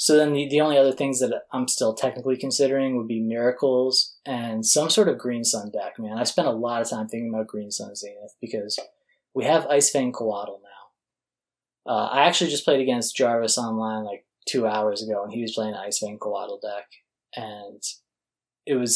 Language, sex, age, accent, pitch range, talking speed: English, male, 10-29, American, 110-135 Hz, 205 wpm